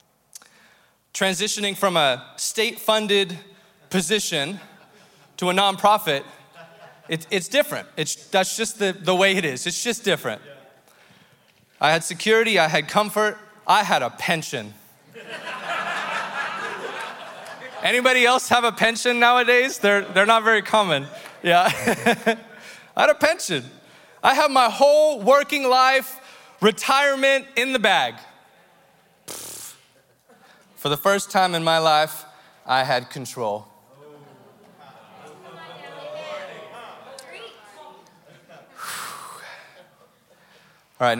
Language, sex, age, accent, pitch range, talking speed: English, male, 20-39, American, 150-215 Hz, 100 wpm